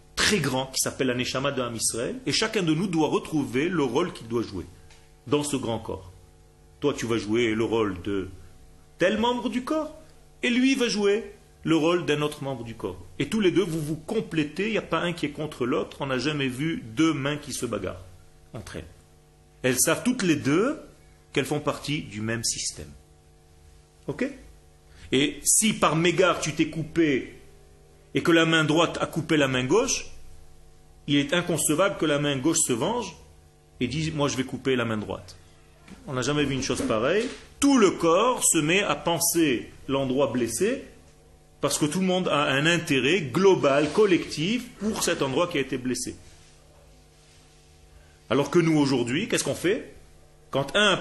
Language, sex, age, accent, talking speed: French, male, 40-59, French, 190 wpm